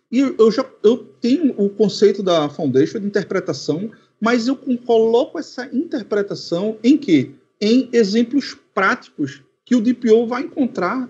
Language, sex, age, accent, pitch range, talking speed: Portuguese, male, 40-59, Brazilian, 170-245 Hz, 135 wpm